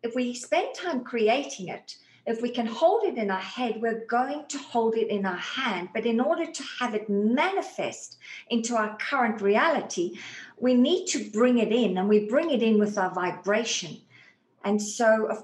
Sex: female